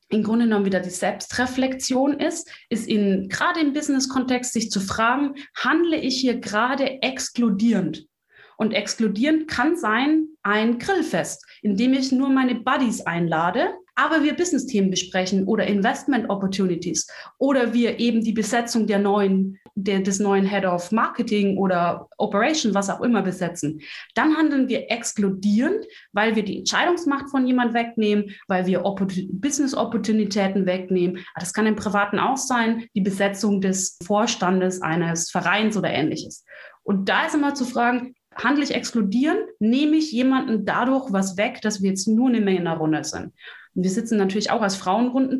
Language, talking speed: German, 155 wpm